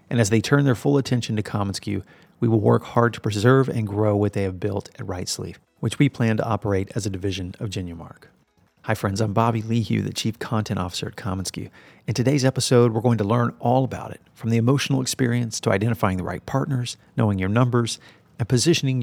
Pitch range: 105-125 Hz